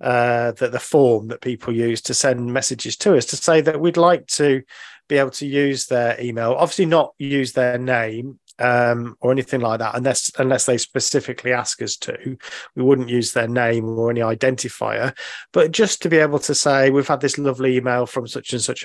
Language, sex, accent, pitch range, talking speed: English, male, British, 120-145 Hz, 205 wpm